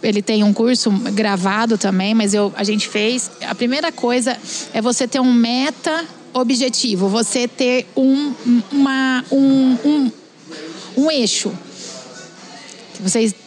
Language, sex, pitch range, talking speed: Portuguese, female, 225-290 Hz, 105 wpm